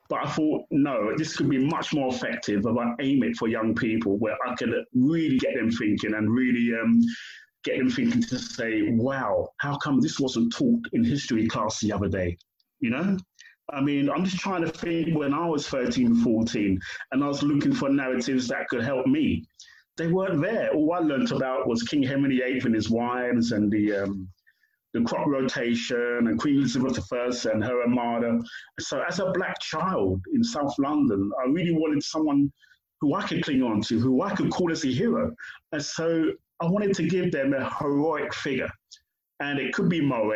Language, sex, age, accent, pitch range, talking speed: English, male, 30-49, British, 120-190 Hz, 200 wpm